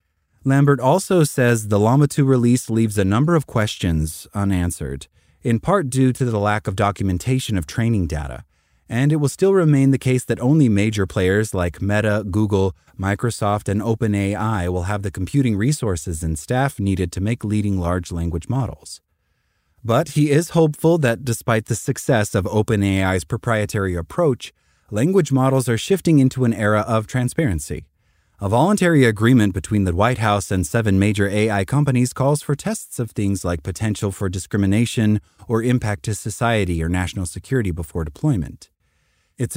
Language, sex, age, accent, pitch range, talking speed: English, male, 30-49, American, 95-125 Hz, 160 wpm